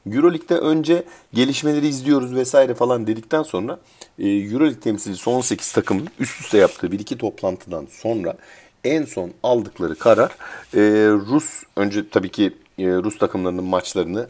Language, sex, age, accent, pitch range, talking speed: Turkish, male, 40-59, native, 90-135 Hz, 125 wpm